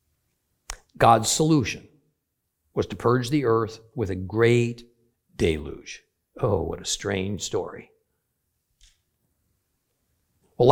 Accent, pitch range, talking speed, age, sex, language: American, 110-145 Hz, 95 wpm, 50-69, male, English